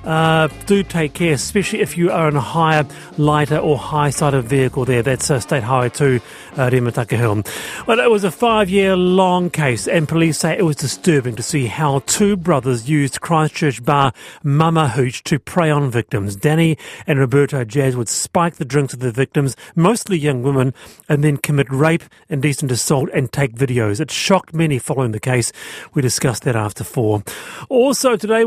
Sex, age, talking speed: male, 40-59, 180 wpm